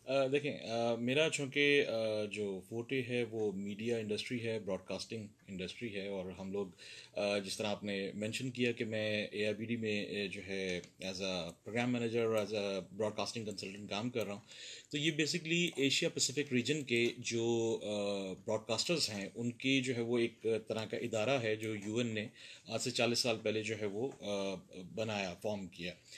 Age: 30-49